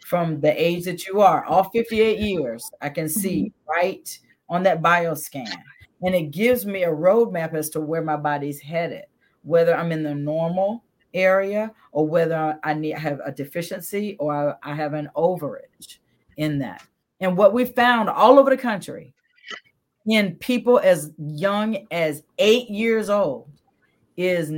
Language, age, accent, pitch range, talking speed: English, 40-59, American, 155-215 Hz, 160 wpm